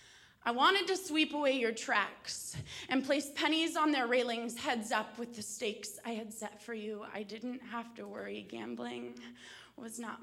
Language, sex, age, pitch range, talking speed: English, female, 20-39, 225-330 Hz, 180 wpm